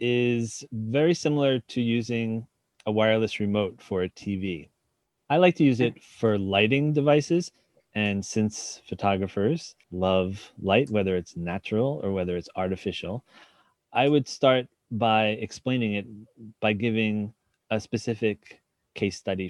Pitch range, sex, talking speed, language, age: 100-125 Hz, male, 130 wpm, English, 30-49